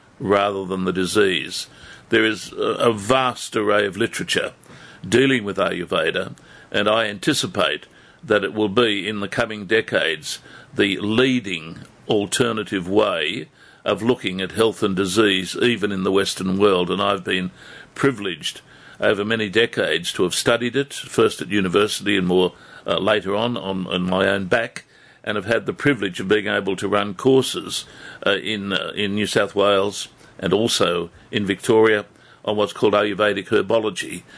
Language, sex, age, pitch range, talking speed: English, male, 60-79, 95-115 Hz, 160 wpm